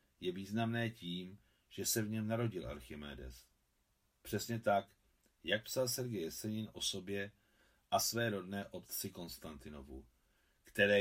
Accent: native